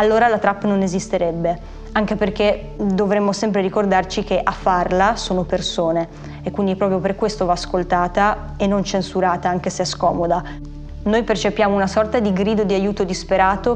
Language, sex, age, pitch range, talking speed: Italian, female, 20-39, 185-210 Hz, 165 wpm